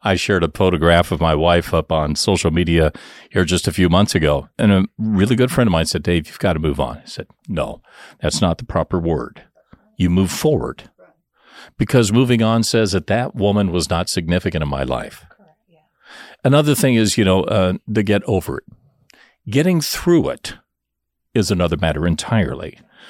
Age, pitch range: 50-69, 80-110 Hz